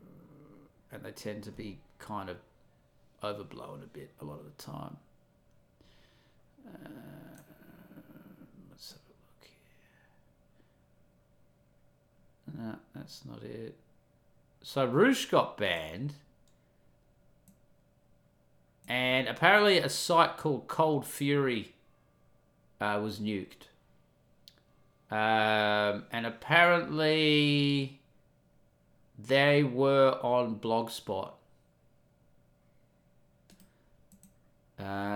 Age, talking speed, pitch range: 40-59, 80 wpm, 105-140 Hz